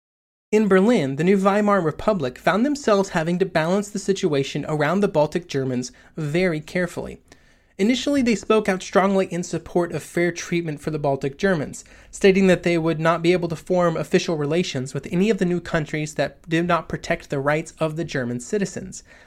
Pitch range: 145-195 Hz